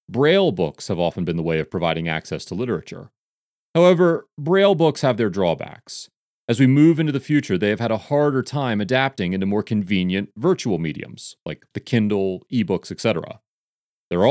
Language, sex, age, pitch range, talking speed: English, male, 30-49, 105-155 Hz, 175 wpm